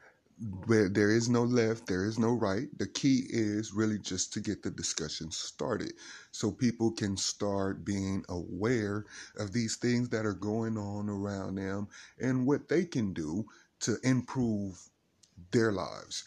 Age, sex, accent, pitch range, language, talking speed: 30-49, male, American, 95-115 Hz, English, 160 wpm